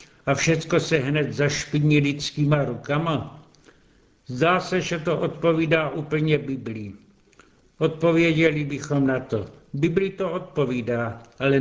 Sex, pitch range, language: male, 135-170 Hz, Czech